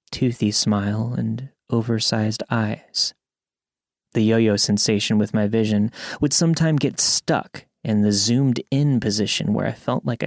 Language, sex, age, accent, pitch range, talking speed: English, male, 30-49, American, 110-140 Hz, 145 wpm